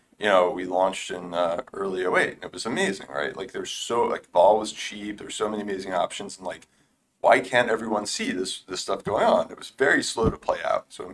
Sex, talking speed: male, 240 wpm